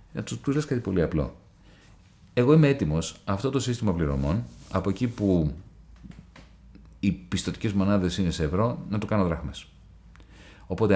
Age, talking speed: 40-59, 150 wpm